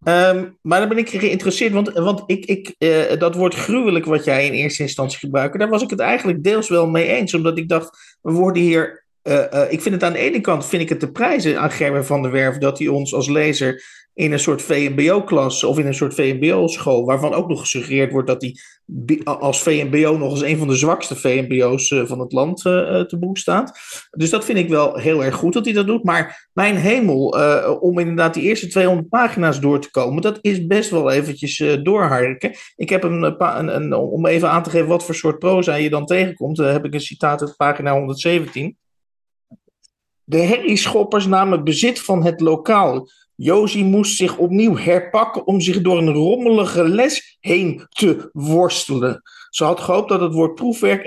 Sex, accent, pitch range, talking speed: male, Dutch, 145-190 Hz, 200 wpm